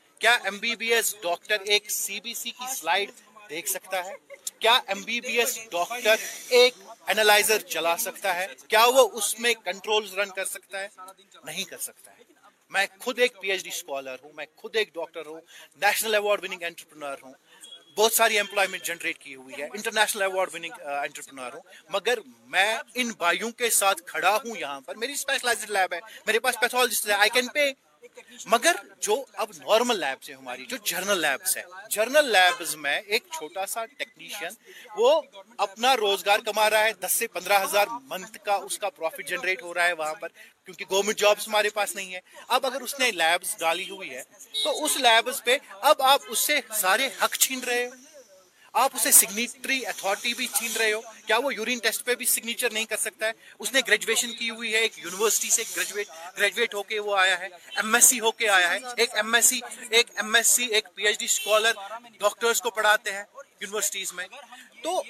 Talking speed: 135 wpm